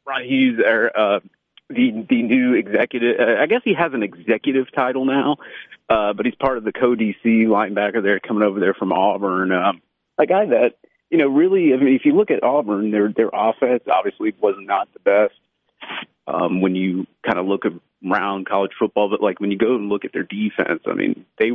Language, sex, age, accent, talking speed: English, male, 30-49, American, 210 wpm